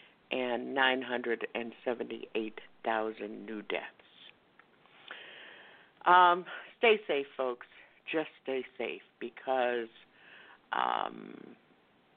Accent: American